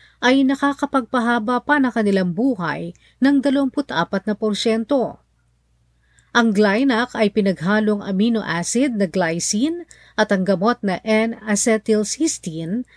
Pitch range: 185-250 Hz